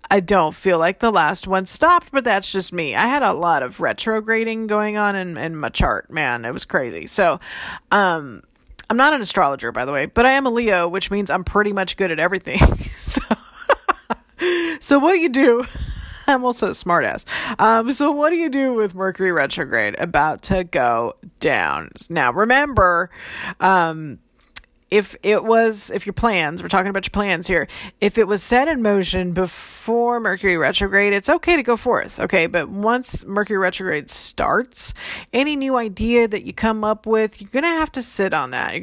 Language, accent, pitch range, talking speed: English, American, 185-235 Hz, 195 wpm